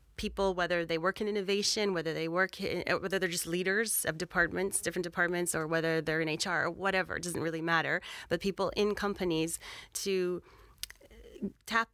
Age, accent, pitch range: 30-49, American, 170-200 Hz